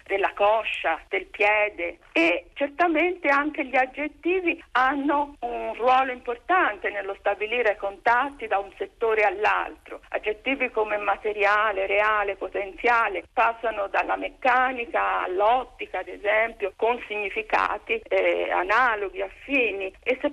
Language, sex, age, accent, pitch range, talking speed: Italian, female, 50-69, native, 195-250 Hz, 110 wpm